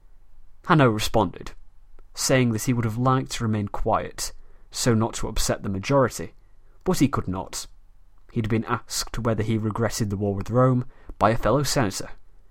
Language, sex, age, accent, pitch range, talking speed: English, male, 30-49, British, 95-120 Hz, 170 wpm